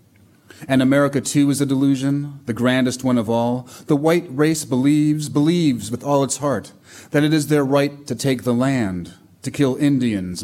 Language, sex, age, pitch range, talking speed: English, male, 30-49, 105-140 Hz, 185 wpm